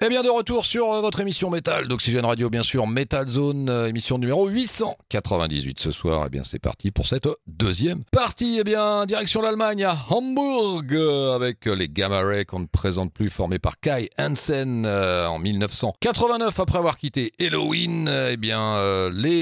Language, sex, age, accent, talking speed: French, male, 40-59, French, 195 wpm